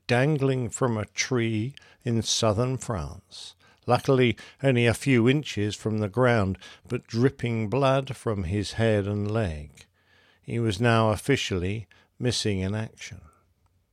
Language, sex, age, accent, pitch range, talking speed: English, male, 50-69, British, 100-130 Hz, 130 wpm